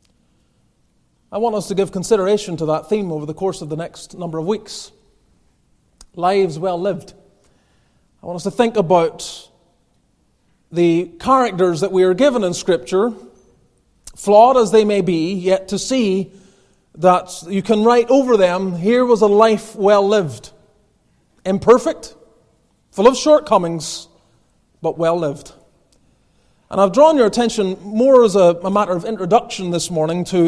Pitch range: 175-225 Hz